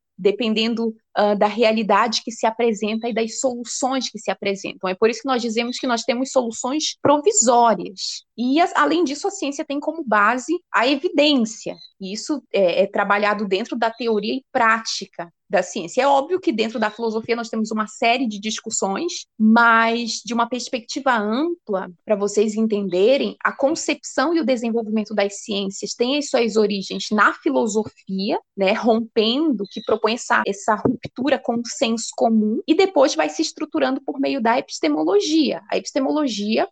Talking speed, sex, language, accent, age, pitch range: 165 wpm, female, Portuguese, Brazilian, 20-39, 215-280 Hz